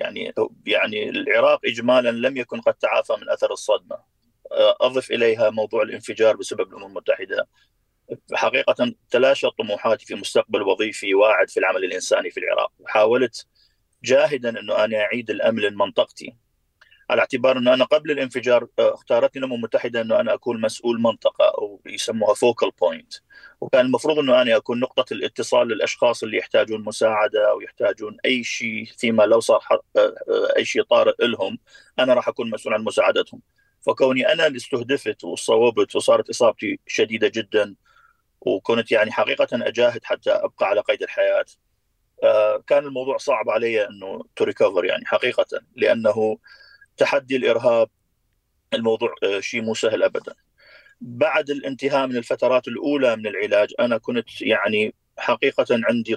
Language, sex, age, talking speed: Arabic, male, 30-49, 140 wpm